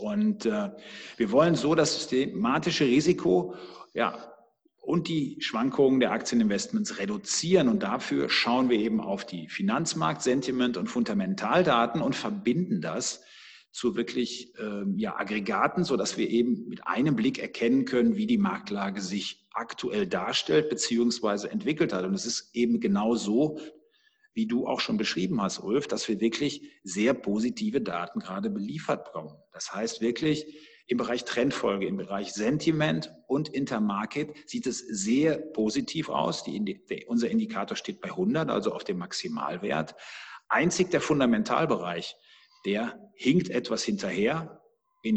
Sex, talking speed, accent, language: male, 140 wpm, German, German